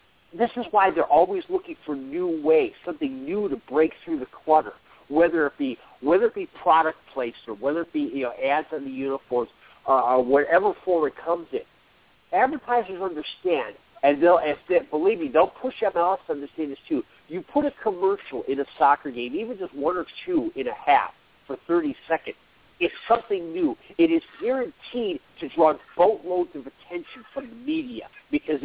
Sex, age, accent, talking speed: male, 50-69, American, 190 wpm